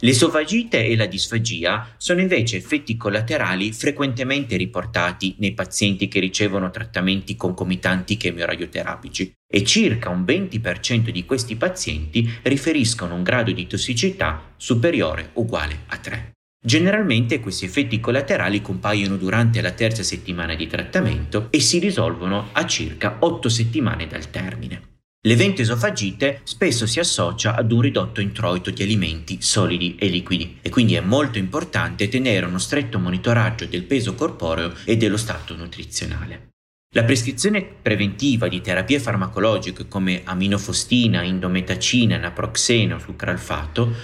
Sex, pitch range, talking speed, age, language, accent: male, 90-115 Hz, 130 wpm, 30-49, Italian, native